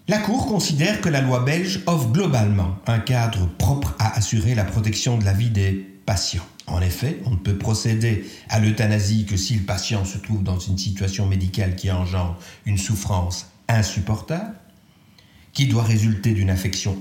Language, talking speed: French, 175 wpm